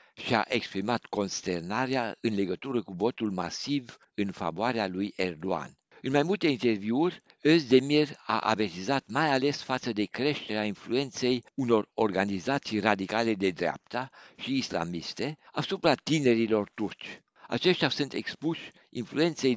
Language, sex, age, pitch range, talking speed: Romanian, male, 60-79, 100-135 Hz, 125 wpm